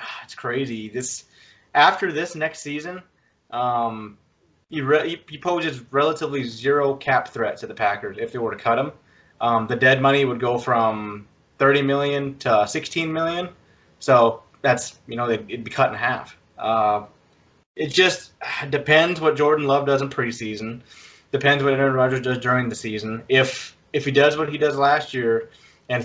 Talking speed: 175 wpm